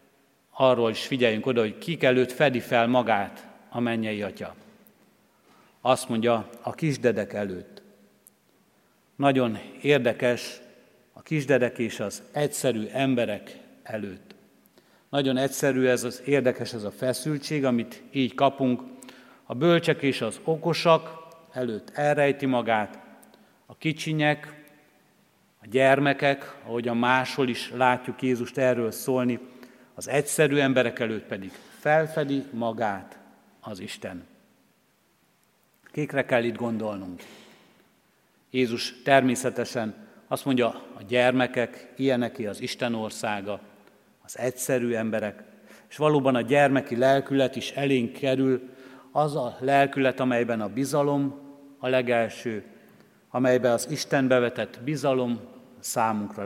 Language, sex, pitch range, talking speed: Hungarian, male, 120-140 Hz, 115 wpm